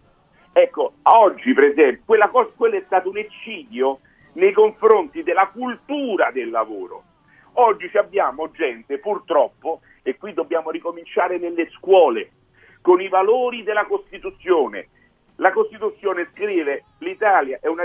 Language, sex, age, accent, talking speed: Italian, male, 50-69, native, 130 wpm